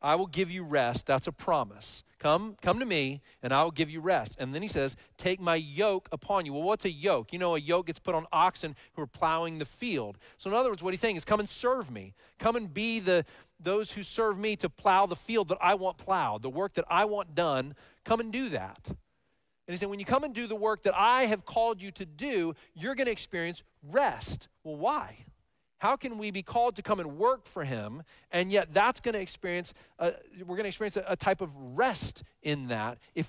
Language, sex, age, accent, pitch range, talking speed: English, male, 40-59, American, 145-205 Hz, 240 wpm